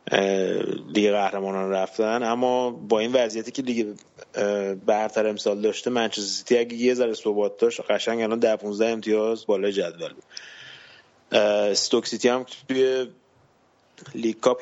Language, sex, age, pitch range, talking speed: Persian, male, 20-39, 100-115 Hz, 125 wpm